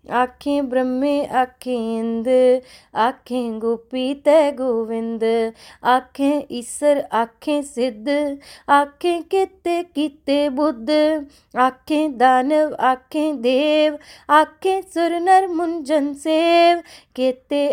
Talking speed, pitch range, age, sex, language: 80 wpm, 255-320 Hz, 20-39, female, Punjabi